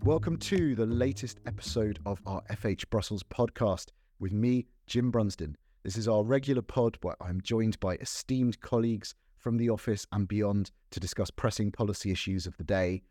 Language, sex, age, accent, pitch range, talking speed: English, male, 30-49, British, 95-120 Hz, 175 wpm